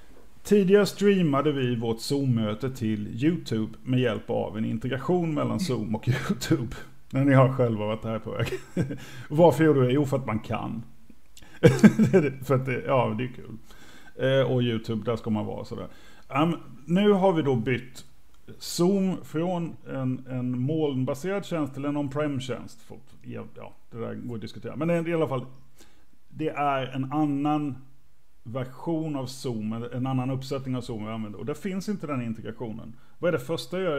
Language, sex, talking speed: Swedish, male, 175 wpm